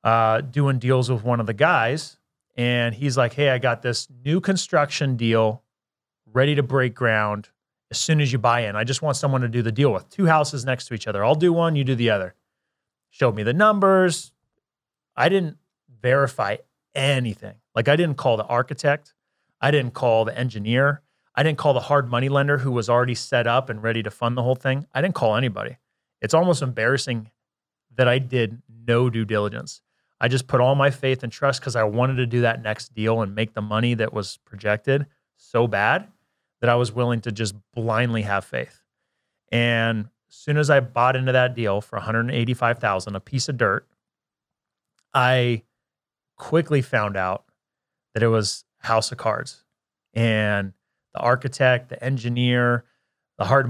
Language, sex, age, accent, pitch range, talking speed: English, male, 30-49, American, 115-135 Hz, 185 wpm